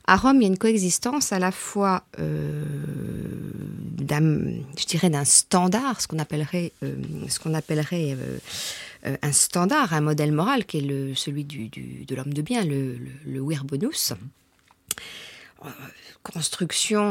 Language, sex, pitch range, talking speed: French, female, 145-195 Hz, 160 wpm